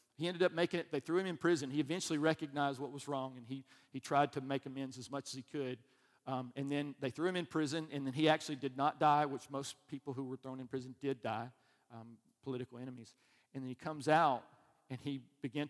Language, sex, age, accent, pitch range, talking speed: English, male, 50-69, American, 125-145 Hz, 245 wpm